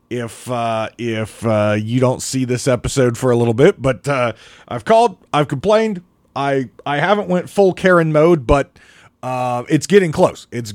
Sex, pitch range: male, 130-185 Hz